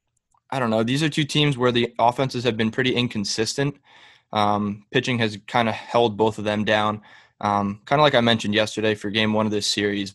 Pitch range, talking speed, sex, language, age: 105-120 Hz, 215 wpm, male, English, 20-39